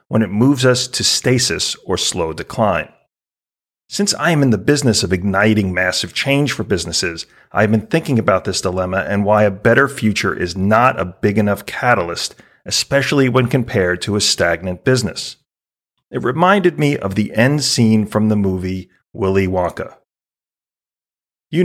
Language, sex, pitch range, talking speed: English, male, 95-130 Hz, 165 wpm